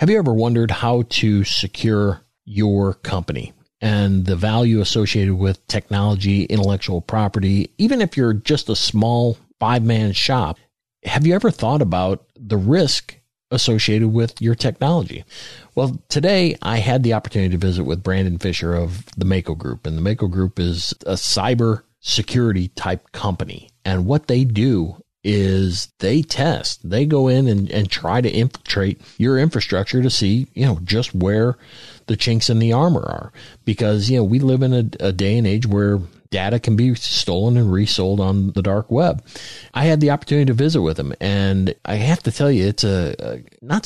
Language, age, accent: English, 40-59, American